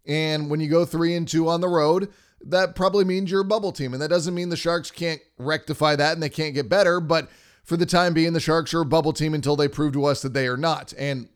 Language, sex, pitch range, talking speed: English, male, 150-175 Hz, 275 wpm